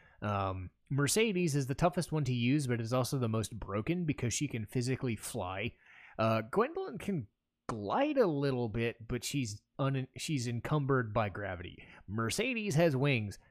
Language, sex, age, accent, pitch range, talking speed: English, male, 30-49, American, 110-150 Hz, 155 wpm